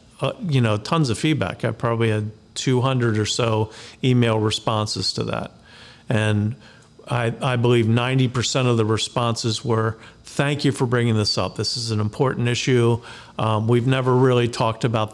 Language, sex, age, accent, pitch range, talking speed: English, male, 40-59, American, 110-130 Hz, 165 wpm